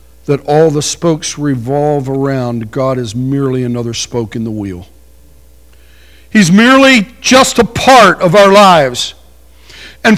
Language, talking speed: English, 135 wpm